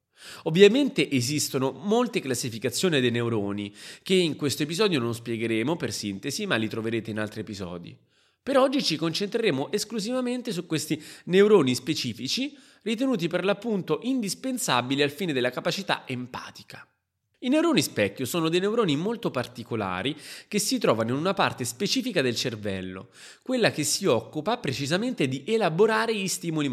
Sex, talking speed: male, 145 wpm